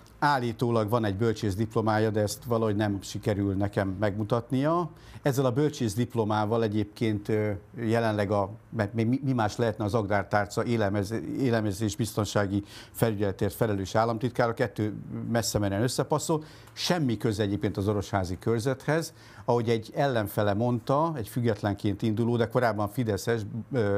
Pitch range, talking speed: 105-130 Hz, 125 wpm